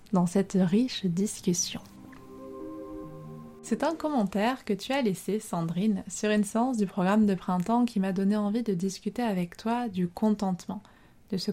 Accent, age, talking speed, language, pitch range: French, 20-39, 160 wpm, French, 180-220 Hz